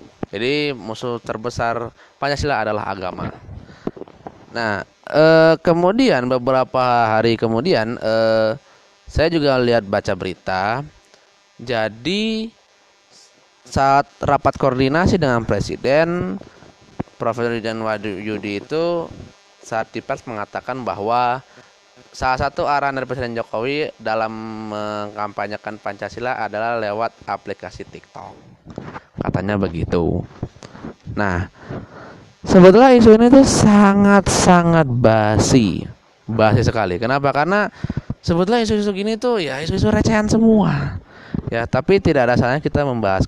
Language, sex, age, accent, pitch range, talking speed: Indonesian, male, 20-39, native, 110-165 Hz, 100 wpm